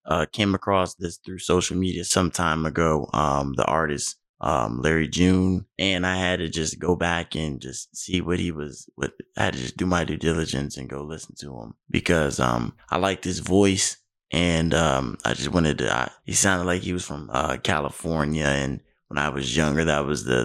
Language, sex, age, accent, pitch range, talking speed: English, male, 20-39, American, 70-90 Hz, 210 wpm